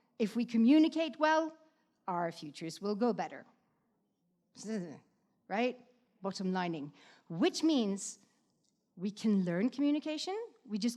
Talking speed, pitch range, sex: 110 wpm, 210-270 Hz, female